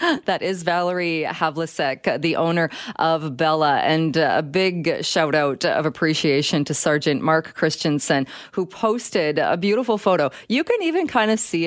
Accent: American